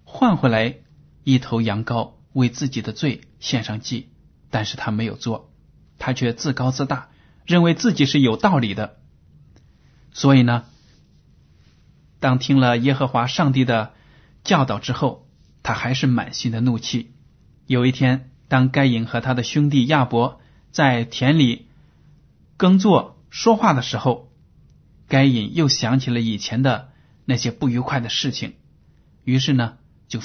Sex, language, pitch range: male, Chinese, 115-145 Hz